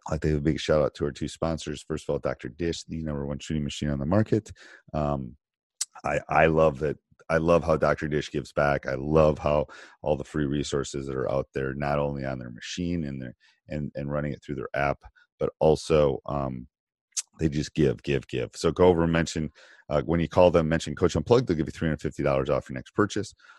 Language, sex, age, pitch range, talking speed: English, male, 30-49, 70-80 Hz, 230 wpm